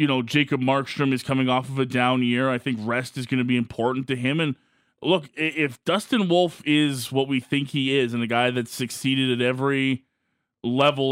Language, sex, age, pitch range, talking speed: English, male, 20-39, 120-140 Hz, 215 wpm